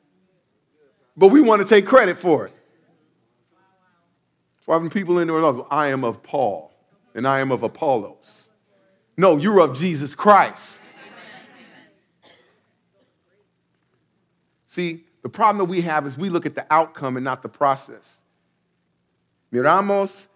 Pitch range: 150-210 Hz